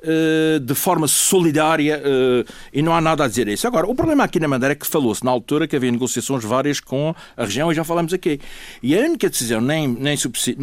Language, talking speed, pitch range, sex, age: Portuguese, 220 wpm, 125-175 Hz, male, 60-79